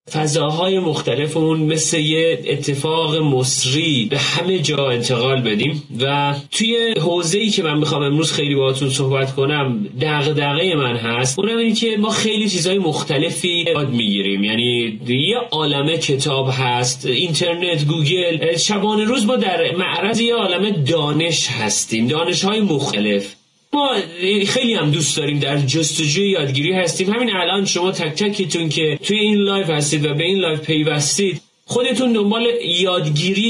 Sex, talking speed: male, 150 wpm